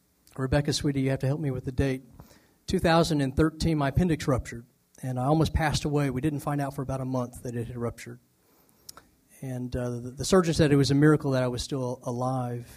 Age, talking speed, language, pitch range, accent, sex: 40-59, 215 wpm, English, 130-155 Hz, American, male